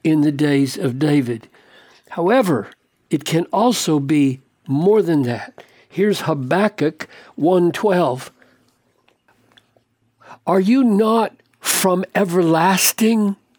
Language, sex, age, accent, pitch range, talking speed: English, male, 60-79, American, 150-200 Hz, 95 wpm